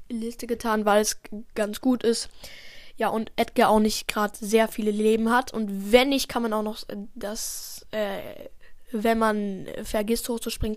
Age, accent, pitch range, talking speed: 10-29, German, 220-260 Hz, 165 wpm